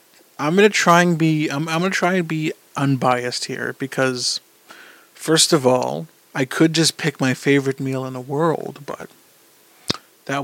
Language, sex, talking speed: English, male, 165 wpm